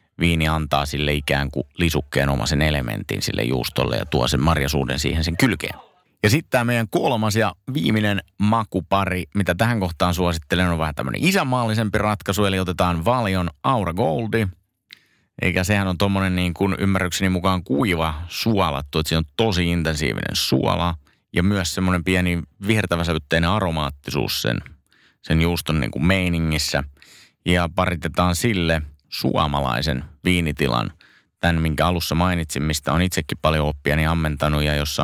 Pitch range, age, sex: 75-95 Hz, 30-49, male